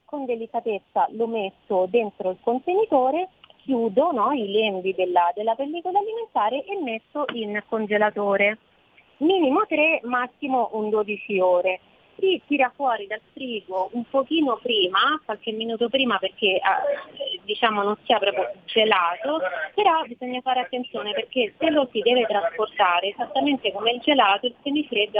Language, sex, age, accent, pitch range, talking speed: Italian, female, 30-49, native, 195-255 Hz, 140 wpm